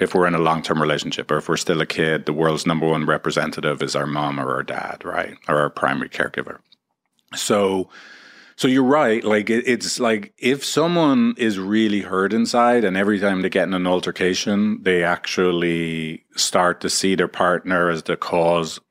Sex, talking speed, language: male, 190 wpm, English